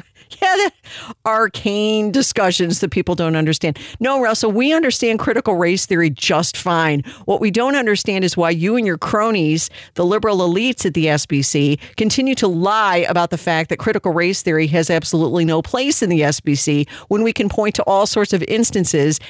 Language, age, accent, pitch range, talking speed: English, 50-69, American, 150-210 Hz, 180 wpm